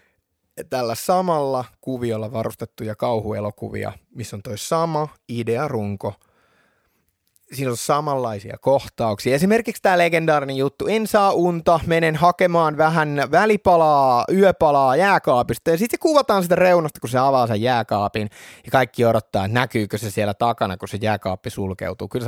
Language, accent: Finnish, native